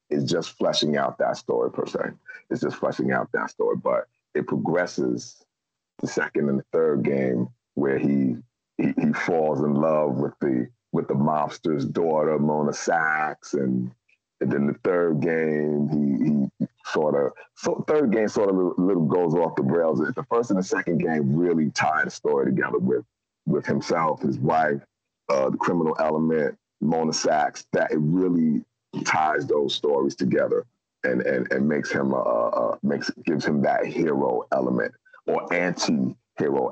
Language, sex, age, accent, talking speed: English, male, 30-49, American, 170 wpm